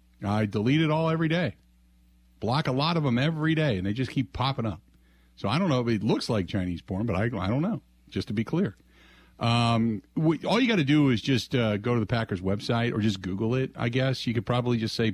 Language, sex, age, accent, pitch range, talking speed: English, male, 50-69, American, 85-135 Hz, 255 wpm